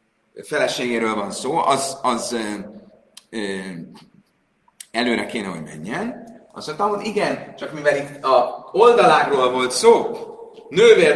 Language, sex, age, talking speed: Hungarian, male, 30-49, 120 wpm